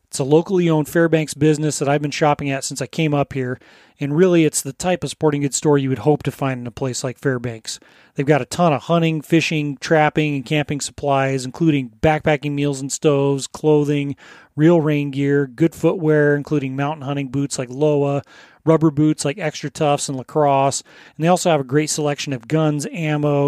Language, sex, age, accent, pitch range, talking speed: English, male, 30-49, American, 140-155 Hz, 205 wpm